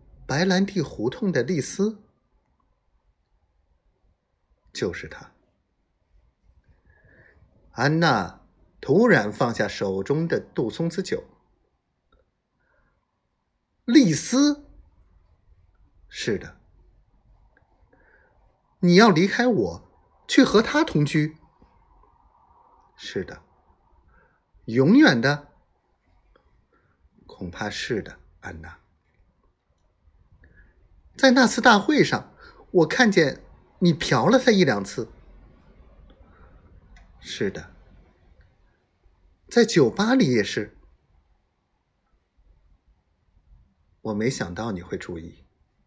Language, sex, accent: Chinese, male, native